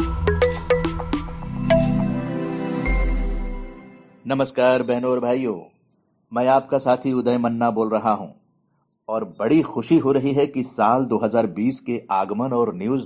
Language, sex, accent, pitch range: Hindi, male, native, 110-140 Hz